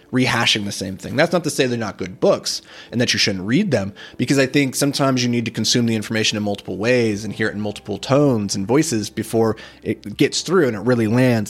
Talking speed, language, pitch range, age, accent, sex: 245 wpm, English, 105-135 Hz, 30-49, American, male